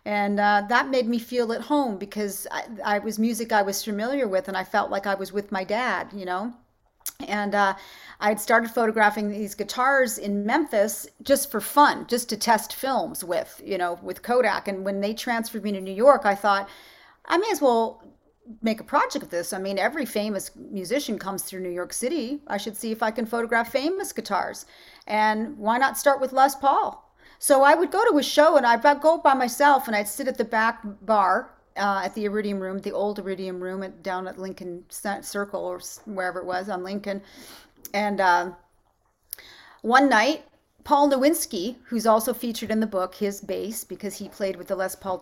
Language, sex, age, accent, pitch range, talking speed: English, female, 40-59, American, 195-250 Hz, 205 wpm